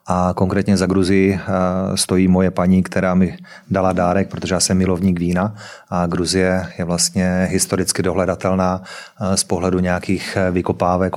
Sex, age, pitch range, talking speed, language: male, 30-49, 90-95 Hz, 140 wpm, Czech